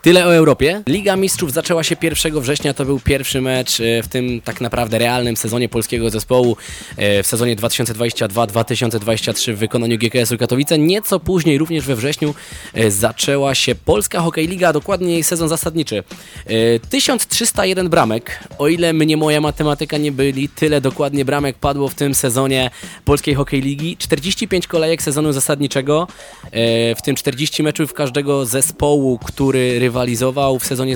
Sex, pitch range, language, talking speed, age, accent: male, 125-160 Hz, Polish, 145 wpm, 20-39, native